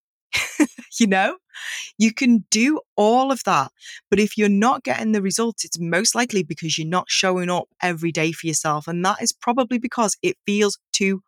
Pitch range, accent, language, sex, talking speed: 165-220 Hz, British, English, female, 185 wpm